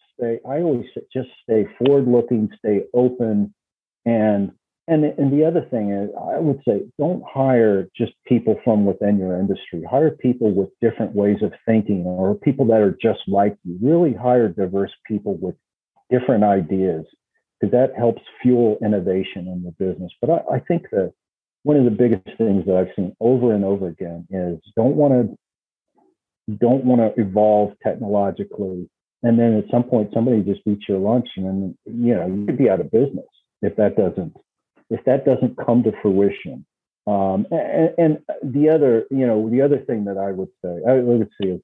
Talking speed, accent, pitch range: 180 wpm, American, 100-125 Hz